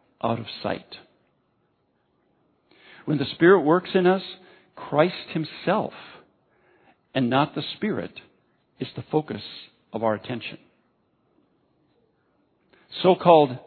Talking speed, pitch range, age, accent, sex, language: 95 wpm, 125-160 Hz, 50-69, American, male, English